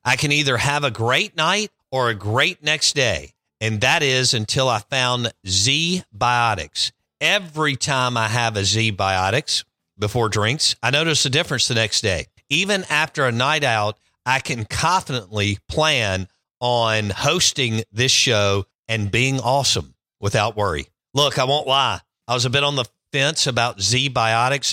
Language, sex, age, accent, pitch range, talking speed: English, male, 50-69, American, 110-150 Hz, 160 wpm